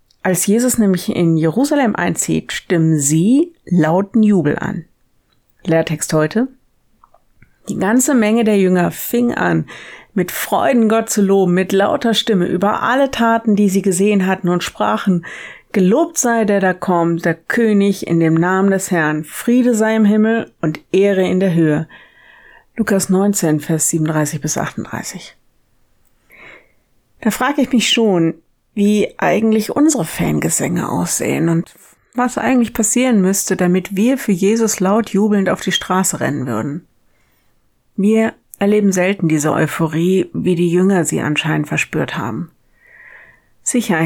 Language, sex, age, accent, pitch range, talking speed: German, female, 50-69, German, 175-220 Hz, 140 wpm